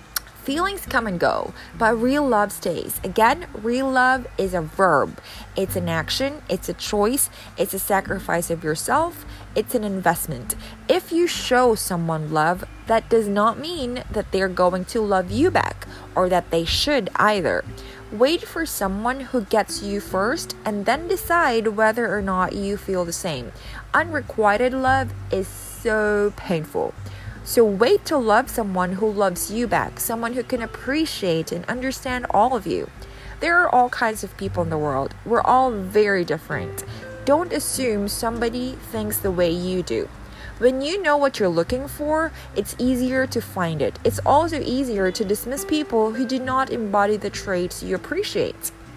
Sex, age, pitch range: female, 20-39, 180-260 Hz